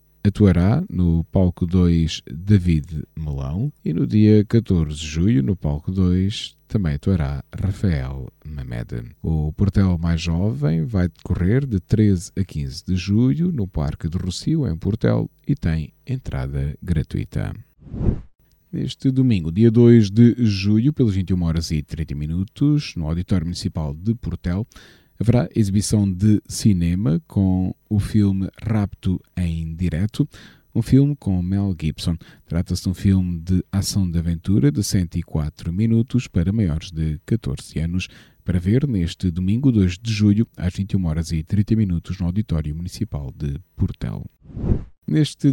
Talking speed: 145 wpm